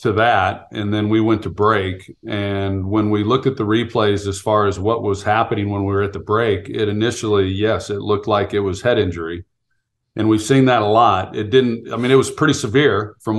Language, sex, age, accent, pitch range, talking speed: English, male, 40-59, American, 100-125 Hz, 235 wpm